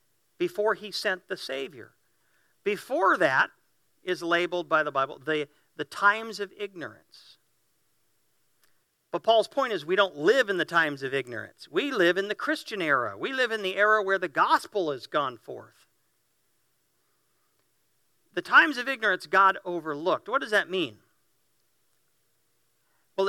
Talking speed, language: 145 wpm, English